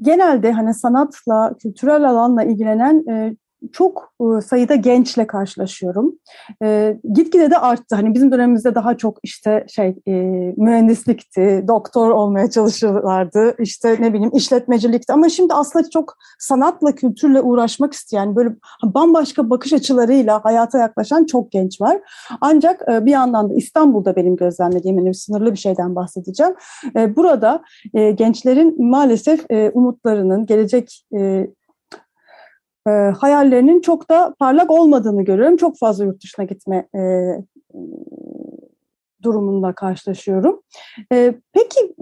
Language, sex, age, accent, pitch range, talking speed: Turkish, female, 30-49, native, 215-295 Hz, 120 wpm